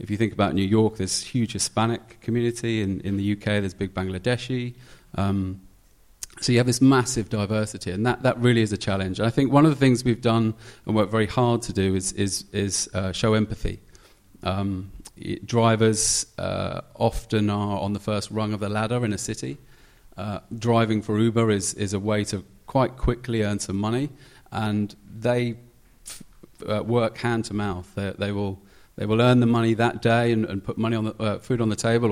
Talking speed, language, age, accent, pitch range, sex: 200 wpm, English, 30-49, British, 105-120 Hz, male